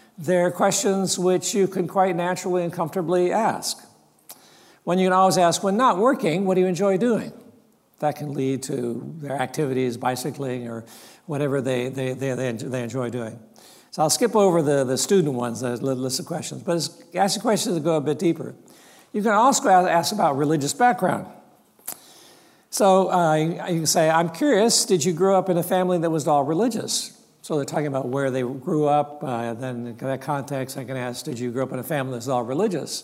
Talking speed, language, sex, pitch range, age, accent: 200 wpm, English, male, 135-190 Hz, 60-79, American